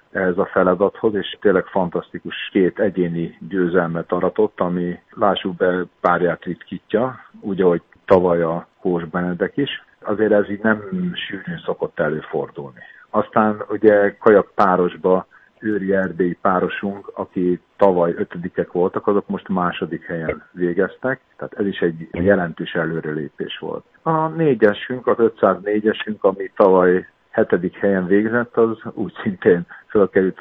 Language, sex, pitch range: Hungarian, male, 90-105 Hz